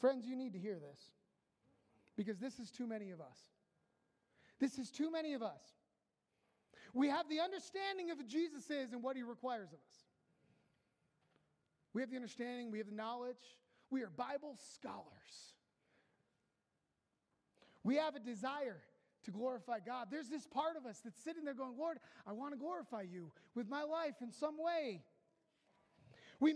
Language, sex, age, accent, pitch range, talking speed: English, male, 30-49, American, 240-310 Hz, 165 wpm